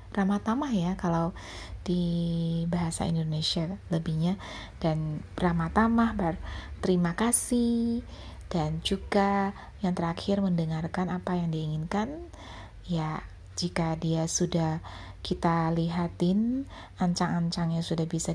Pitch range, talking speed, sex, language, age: 160-190 Hz, 95 wpm, female, Indonesian, 20-39